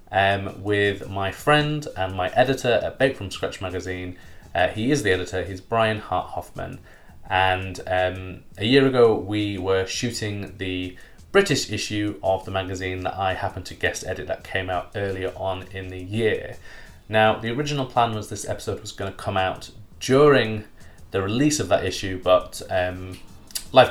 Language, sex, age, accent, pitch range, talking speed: English, male, 20-39, British, 90-110 Hz, 175 wpm